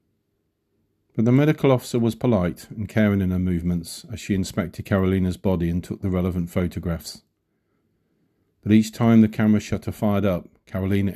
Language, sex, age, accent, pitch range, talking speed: English, male, 40-59, British, 90-110 Hz, 160 wpm